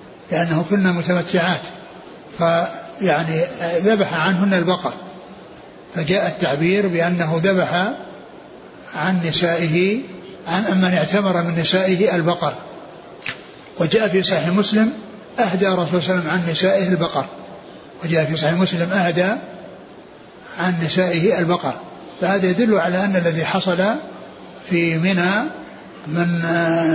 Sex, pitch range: male, 170-195 Hz